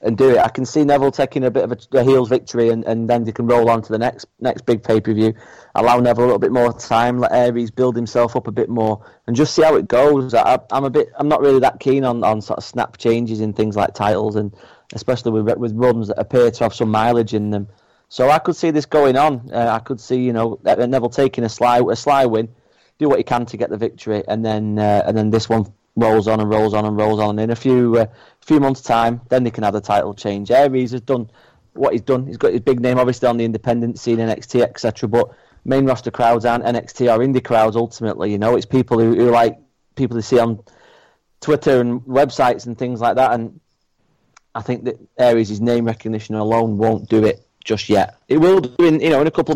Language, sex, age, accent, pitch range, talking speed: English, male, 30-49, British, 110-125 Hz, 255 wpm